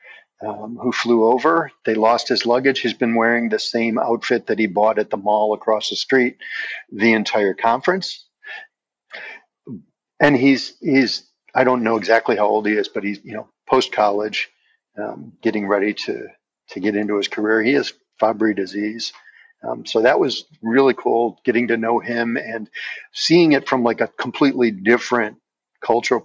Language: English